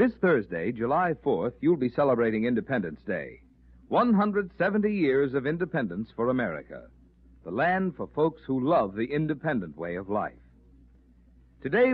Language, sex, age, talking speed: English, male, 60-79, 135 wpm